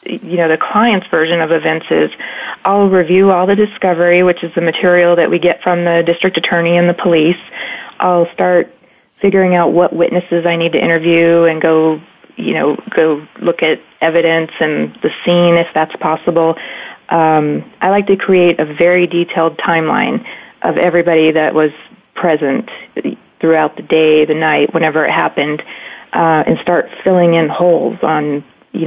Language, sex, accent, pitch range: English, female, American, 160-185 Hz